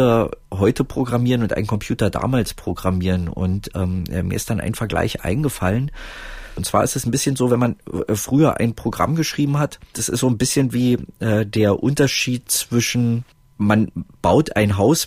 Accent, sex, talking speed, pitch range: German, male, 170 wpm, 95-115 Hz